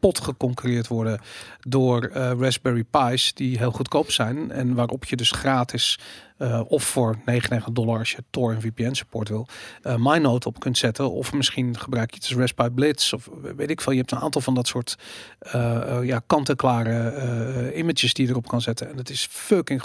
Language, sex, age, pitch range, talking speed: Dutch, male, 40-59, 120-145 Hz, 195 wpm